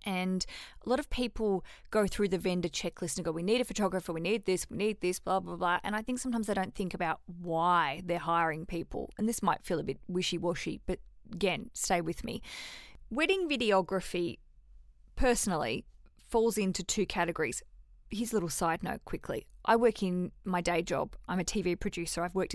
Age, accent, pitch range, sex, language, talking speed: 20-39, Australian, 175-215 Hz, female, English, 195 wpm